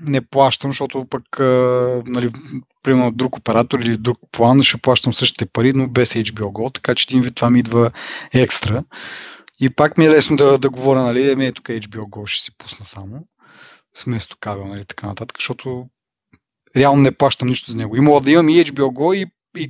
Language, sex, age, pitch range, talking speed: Bulgarian, male, 20-39, 115-140 Hz, 190 wpm